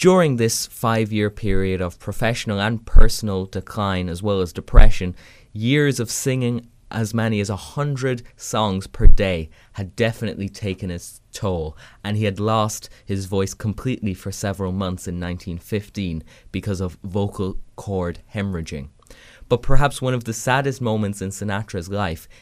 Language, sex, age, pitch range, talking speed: English, male, 20-39, 95-110 Hz, 150 wpm